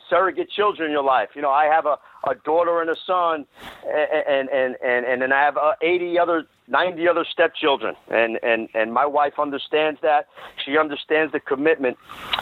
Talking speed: 195 wpm